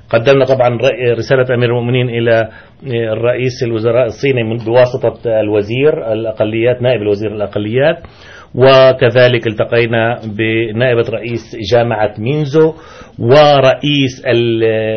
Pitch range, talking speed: 110-130 Hz, 90 wpm